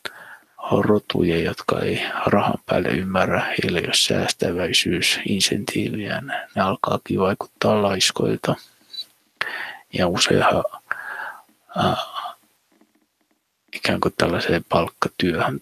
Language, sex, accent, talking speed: Finnish, male, native, 85 wpm